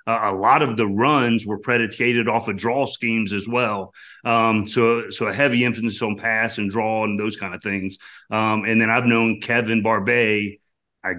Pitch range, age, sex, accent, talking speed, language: 110-125 Hz, 40-59, male, American, 200 wpm, English